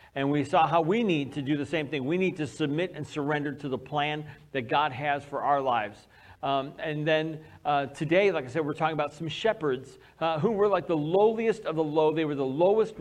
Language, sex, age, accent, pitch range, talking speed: English, male, 40-59, American, 140-180 Hz, 240 wpm